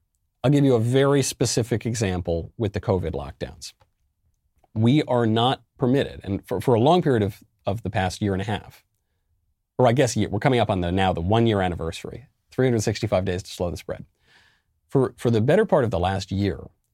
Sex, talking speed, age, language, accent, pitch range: male, 200 wpm, 40-59, English, American, 95-125 Hz